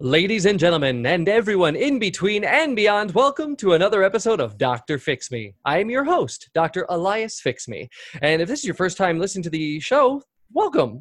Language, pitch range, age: English, 145-235 Hz, 30-49